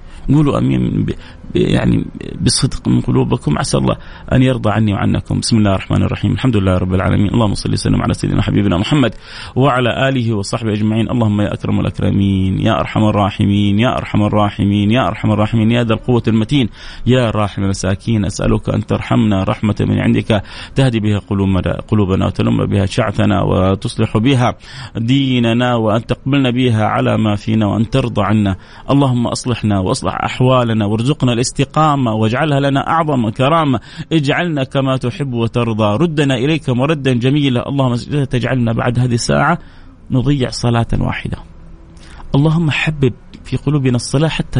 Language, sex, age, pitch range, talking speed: Arabic, male, 30-49, 105-135 Hz, 145 wpm